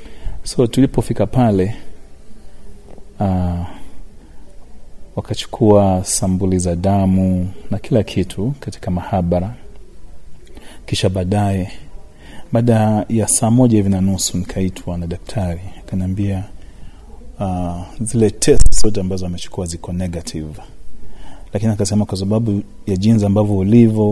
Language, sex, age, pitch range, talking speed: Swahili, male, 40-59, 90-105 Hz, 100 wpm